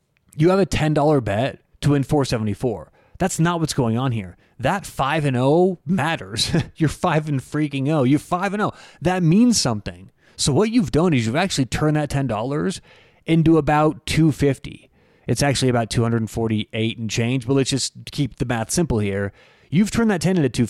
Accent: American